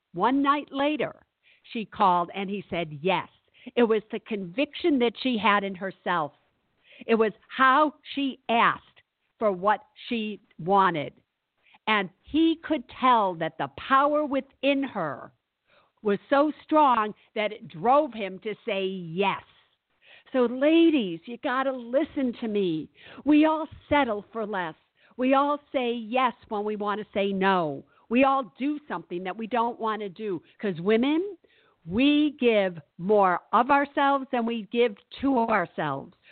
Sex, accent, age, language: female, American, 50-69, English